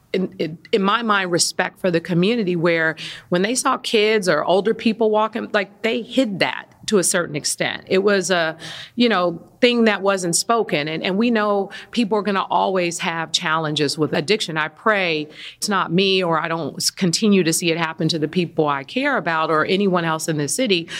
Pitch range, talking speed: 165-225 Hz, 205 wpm